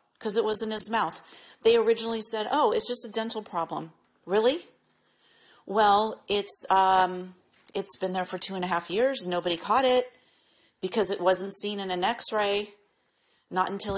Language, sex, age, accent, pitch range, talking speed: English, female, 40-59, American, 180-225 Hz, 170 wpm